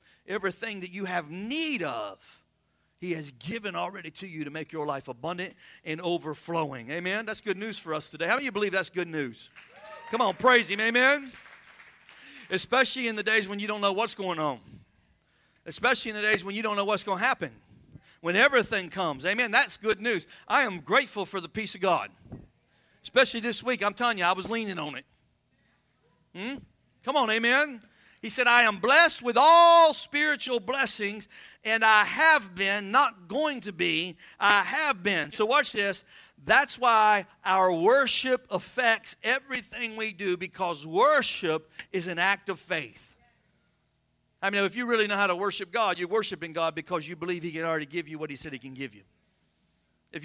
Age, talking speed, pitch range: 50-69, 190 wpm, 170-235 Hz